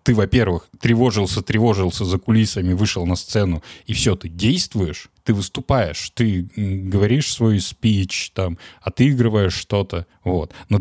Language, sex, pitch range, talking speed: Russian, male, 95-115 Hz, 135 wpm